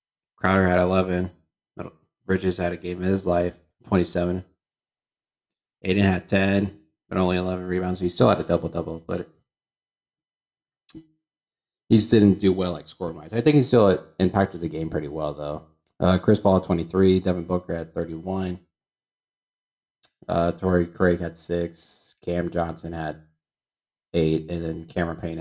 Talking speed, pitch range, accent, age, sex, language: 155 wpm, 85-100 Hz, American, 30-49, male, English